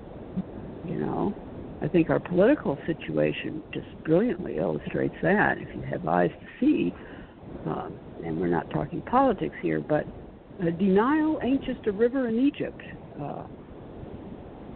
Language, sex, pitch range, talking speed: English, female, 160-215 Hz, 135 wpm